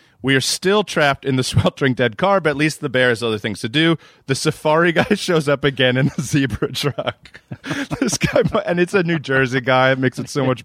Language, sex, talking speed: English, male, 235 wpm